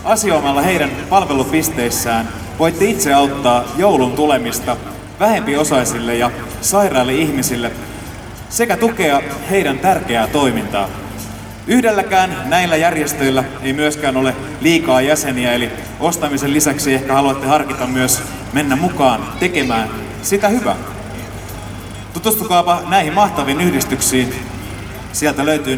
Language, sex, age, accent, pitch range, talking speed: Finnish, male, 30-49, native, 115-155 Hz, 100 wpm